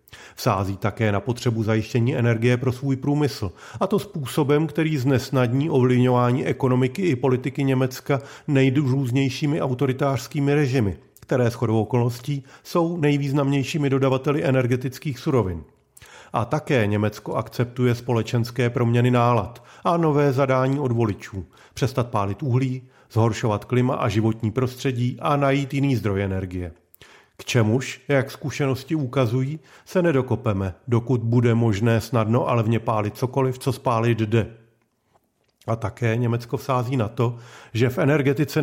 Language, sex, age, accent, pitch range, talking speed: Czech, male, 40-59, native, 115-140 Hz, 130 wpm